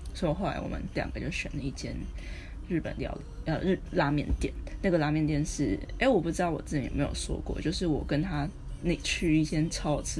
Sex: female